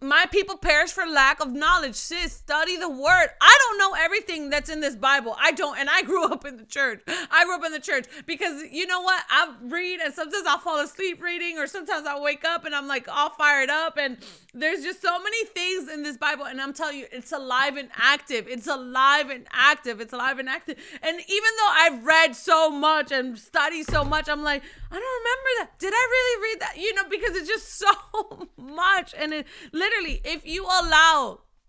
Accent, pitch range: American, 275-345 Hz